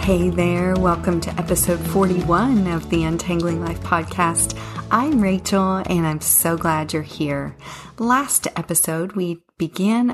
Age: 40-59